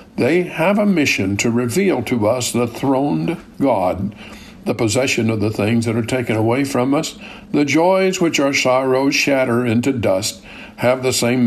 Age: 60-79